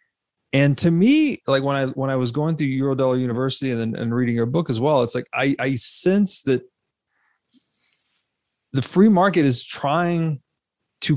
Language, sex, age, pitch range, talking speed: English, male, 30-49, 110-140 Hz, 175 wpm